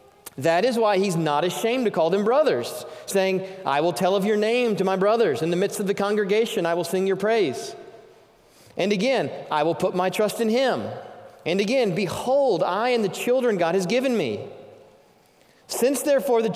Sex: male